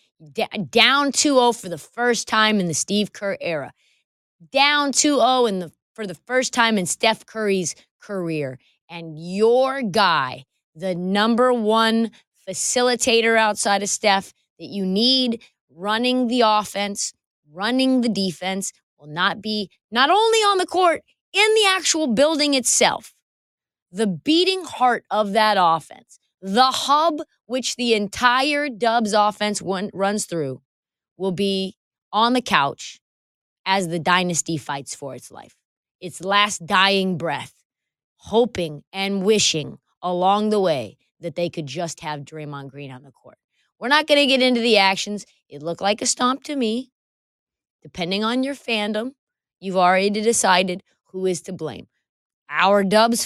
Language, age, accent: English, 20-39, American